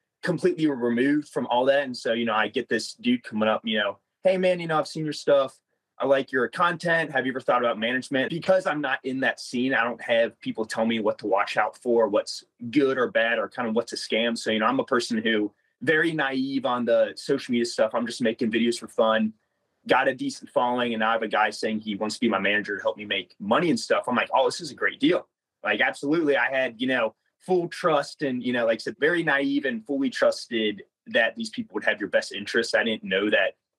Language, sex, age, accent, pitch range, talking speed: English, male, 30-49, American, 115-150 Hz, 255 wpm